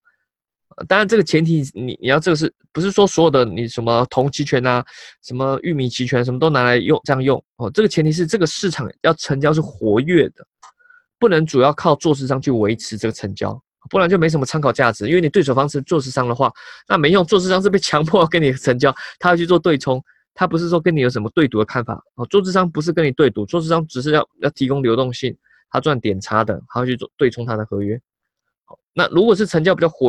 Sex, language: male, Chinese